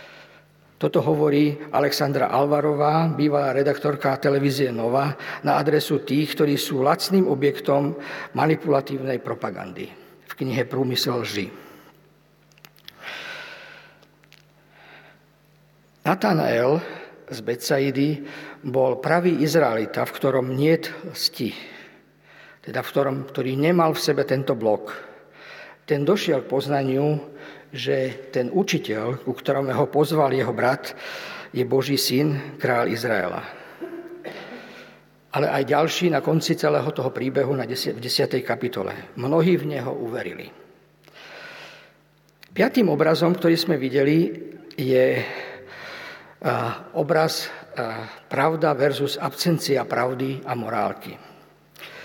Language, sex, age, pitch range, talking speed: Slovak, male, 50-69, 135-160 Hz, 100 wpm